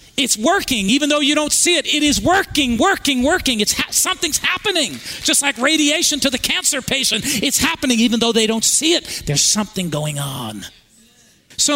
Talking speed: 190 wpm